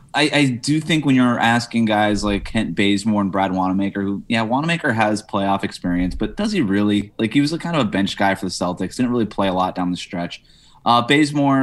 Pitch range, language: 95-115 Hz, English